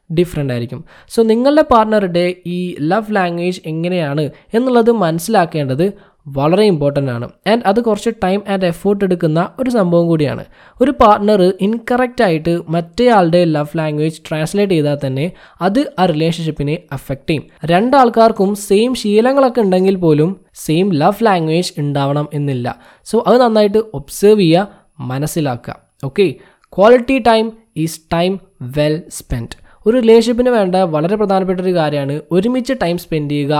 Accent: native